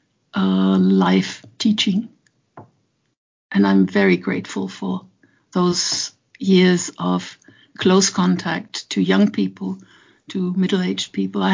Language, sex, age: English, female, 60-79